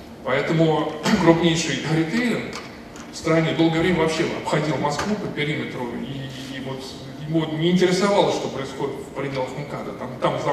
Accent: native